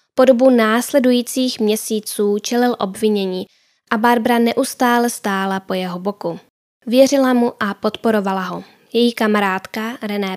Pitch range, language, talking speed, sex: 205-245 Hz, Czech, 120 wpm, female